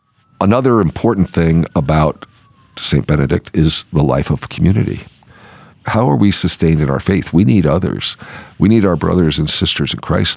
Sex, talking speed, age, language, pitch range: male, 170 wpm, 50-69, English, 75-95 Hz